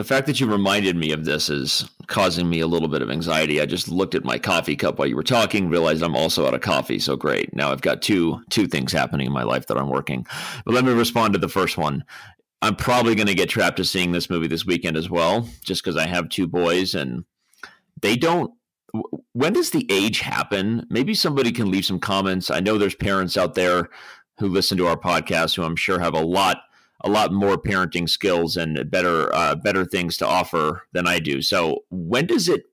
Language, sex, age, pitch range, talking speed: English, male, 40-59, 85-120 Hz, 235 wpm